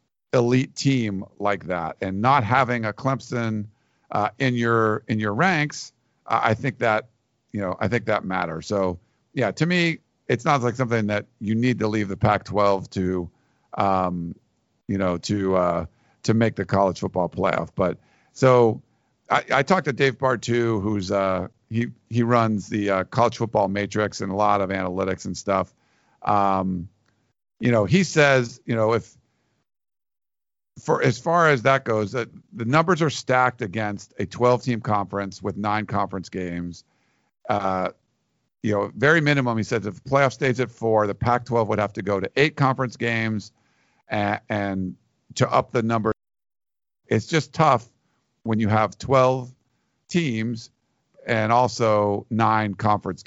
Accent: American